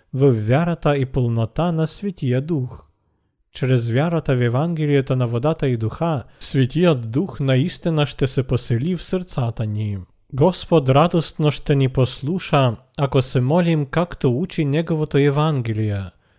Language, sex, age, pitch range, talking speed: Bulgarian, male, 40-59, 125-155 Hz, 130 wpm